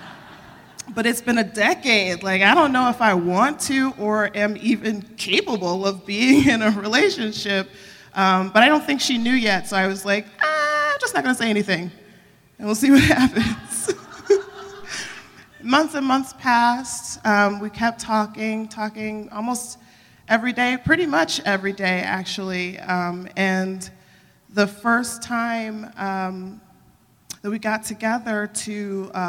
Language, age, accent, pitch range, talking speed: English, 20-39, American, 190-235 Hz, 155 wpm